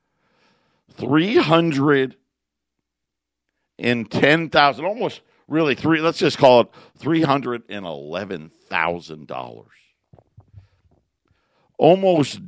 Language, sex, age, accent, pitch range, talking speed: English, male, 50-69, American, 110-150 Hz, 90 wpm